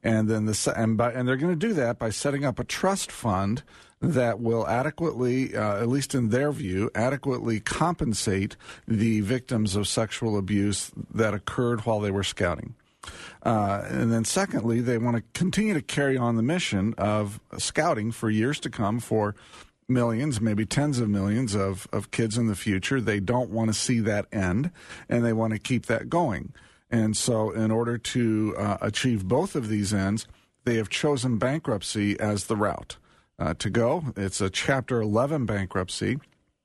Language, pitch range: English, 105-125 Hz